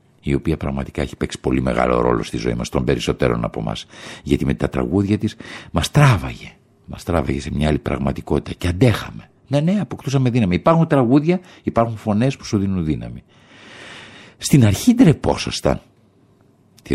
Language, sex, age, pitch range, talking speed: Greek, male, 60-79, 70-115 Hz, 165 wpm